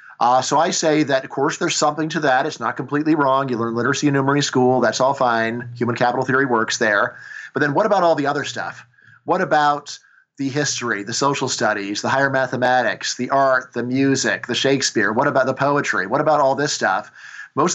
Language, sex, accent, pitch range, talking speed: English, male, American, 125-150 Hz, 215 wpm